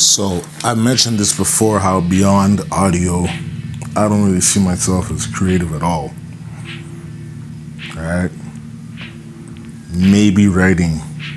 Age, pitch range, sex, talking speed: 30-49, 80-120 Hz, male, 110 wpm